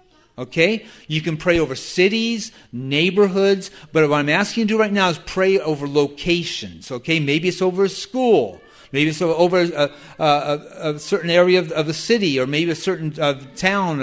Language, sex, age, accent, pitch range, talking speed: English, male, 50-69, American, 140-175 Hz, 190 wpm